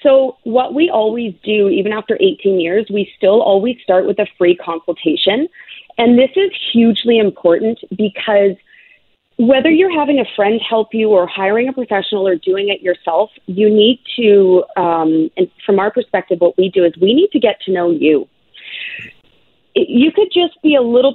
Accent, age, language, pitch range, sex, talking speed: American, 30-49, English, 195-255 Hz, female, 180 wpm